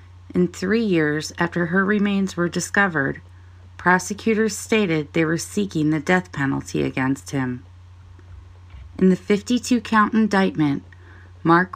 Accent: American